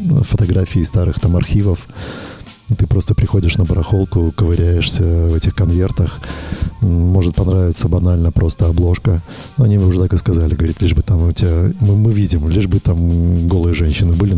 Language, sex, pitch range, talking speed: Russian, male, 85-105 Hz, 160 wpm